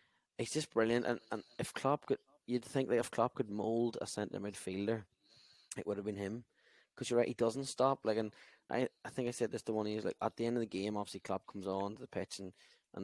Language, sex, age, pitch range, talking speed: English, male, 10-29, 100-120 Hz, 265 wpm